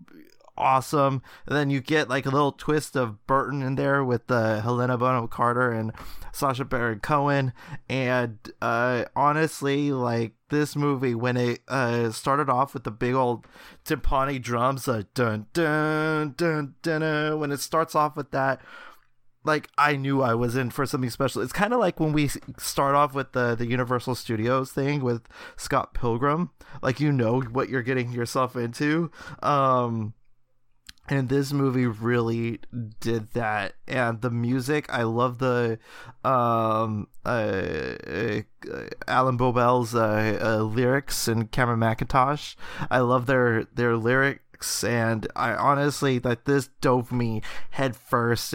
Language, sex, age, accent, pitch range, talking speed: English, male, 20-39, American, 115-140 Hz, 155 wpm